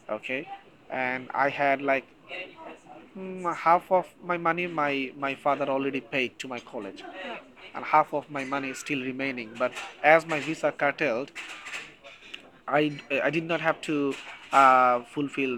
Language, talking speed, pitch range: English, 150 wpm, 130-165 Hz